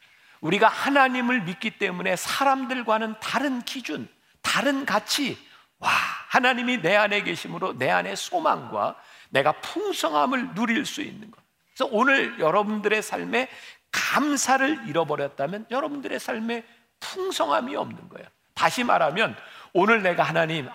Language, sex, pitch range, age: Korean, male, 170-270 Hz, 50-69